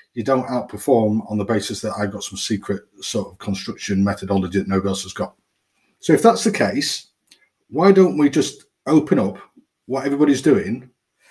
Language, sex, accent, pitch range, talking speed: English, male, British, 110-175 Hz, 180 wpm